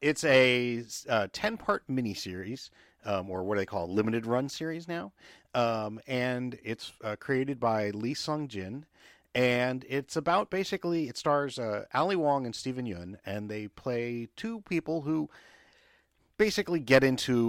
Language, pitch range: English, 105-150 Hz